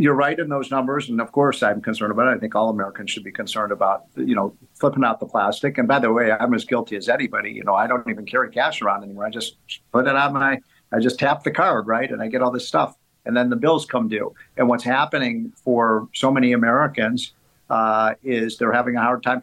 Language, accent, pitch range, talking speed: English, American, 115-145 Hz, 255 wpm